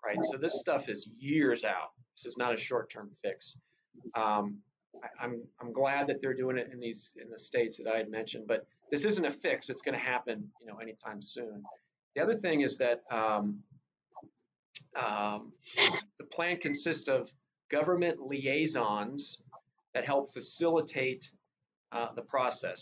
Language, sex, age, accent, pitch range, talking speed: English, male, 40-59, American, 120-160 Hz, 170 wpm